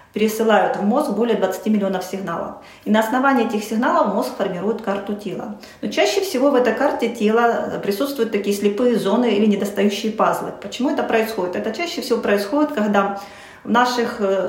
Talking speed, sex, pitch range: 165 wpm, female, 195-235 Hz